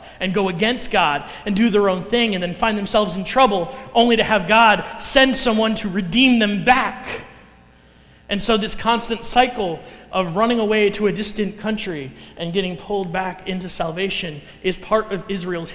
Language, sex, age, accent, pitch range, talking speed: English, male, 30-49, American, 170-220 Hz, 180 wpm